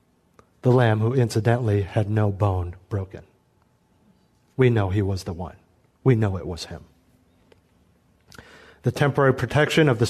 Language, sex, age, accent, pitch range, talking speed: English, male, 40-59, American, 120-160 Hz, 145 wpm